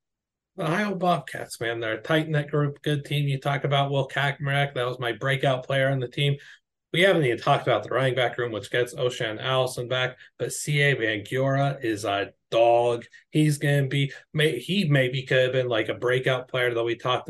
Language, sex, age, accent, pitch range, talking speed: English, male, 30-49, American, 115-130 Hz, 210 wpm